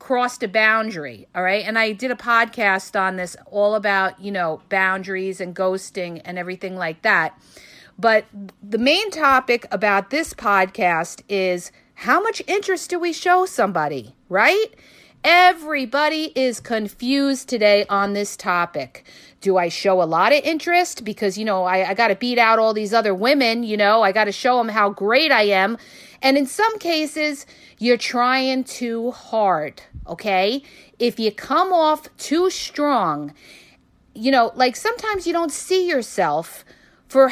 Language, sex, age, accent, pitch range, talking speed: English, female, 50-69, American, 200-295 Hz, 160 wpm